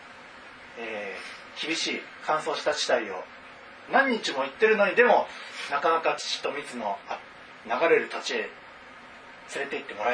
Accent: native